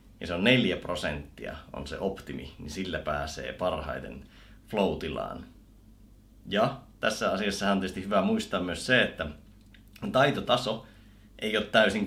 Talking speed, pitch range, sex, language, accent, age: 135 wpm, 95-115 Hz, male, Finnish, native, 30-49